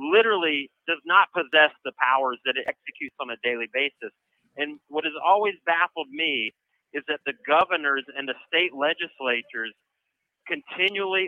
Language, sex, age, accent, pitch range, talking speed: English, male, 40-59, American, 140-190 Hz, 150 wpm